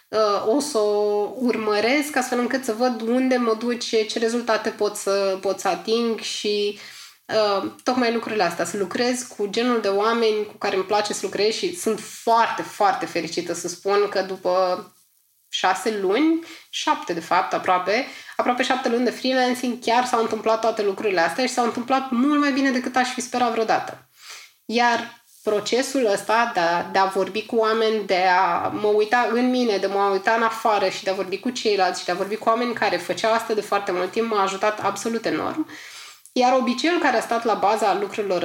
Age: 20-39